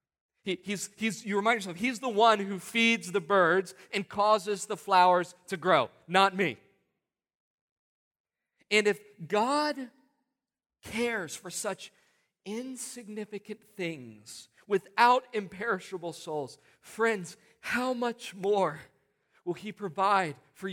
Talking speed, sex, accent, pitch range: 105 wpm, male, American, 120-200 Hz